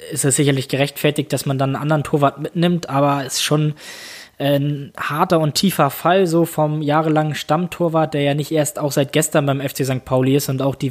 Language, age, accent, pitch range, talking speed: German, 20-39, German, 140-165 Hz, 215 wpm